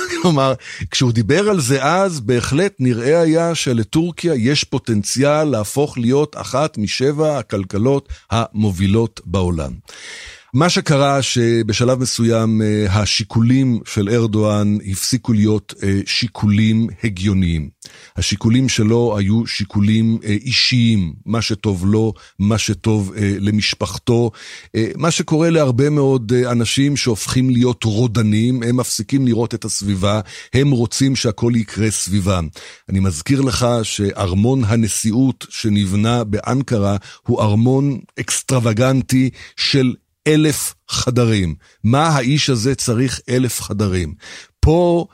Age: 50-69